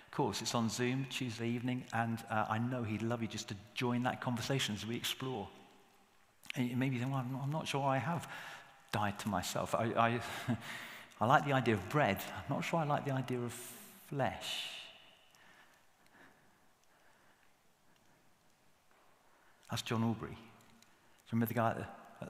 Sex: male